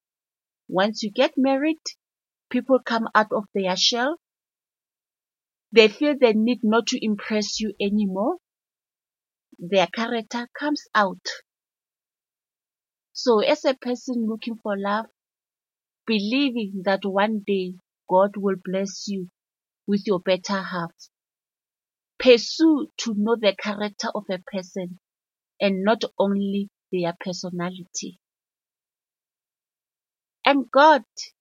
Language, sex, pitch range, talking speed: English, female, 195-245 Hz, 105 wpm